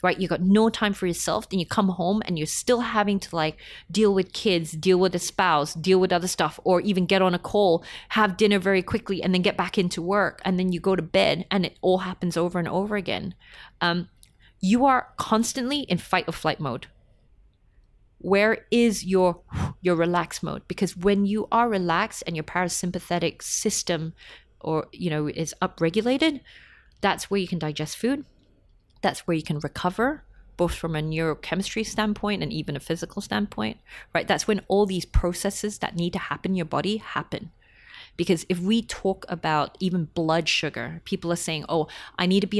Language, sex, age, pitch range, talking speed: English, female, 30-49, 160-200 Hz, 195 wpm